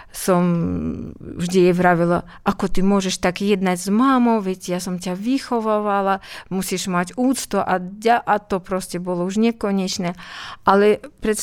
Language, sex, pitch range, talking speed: Slovak, female, 195-255 Hz, 145 wpm